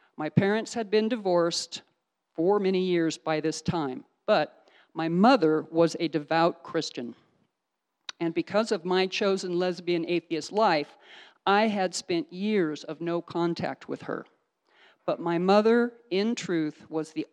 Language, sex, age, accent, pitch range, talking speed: English, male, 50-69, American, 165-205 Hz, 145 wpm